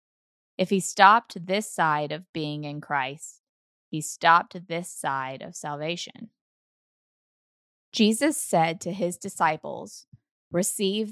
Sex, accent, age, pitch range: female, American, 20-39, 155-195 Hz